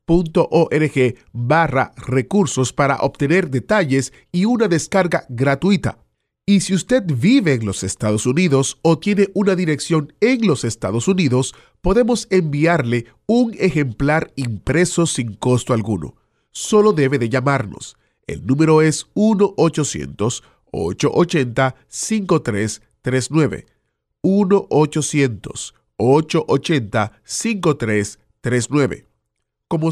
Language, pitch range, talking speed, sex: Spanish, 120-170 Hz, 90 wpm, male